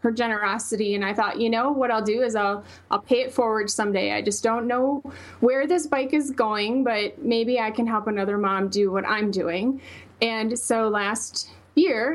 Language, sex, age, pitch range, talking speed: English, female, 30-49, 220-265 Hz, 205 wpm